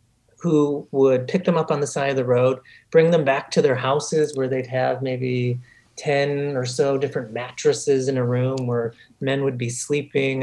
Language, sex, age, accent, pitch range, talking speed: English, male, 30-49, American, 125-155 Hz, 195 wpm